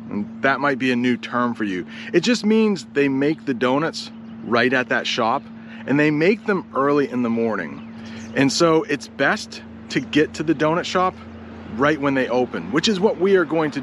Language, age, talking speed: English, 30-49, 210 wpm